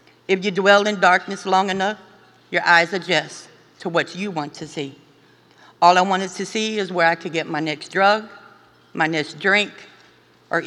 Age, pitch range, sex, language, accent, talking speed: 50-69, 160-200 Hz, female, English, American, 185 wpm